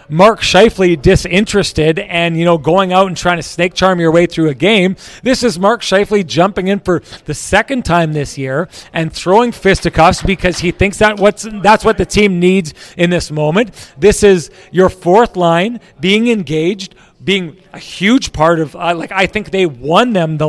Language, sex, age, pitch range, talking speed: English, male, 40-59, 165-205 Hz, 195 wpm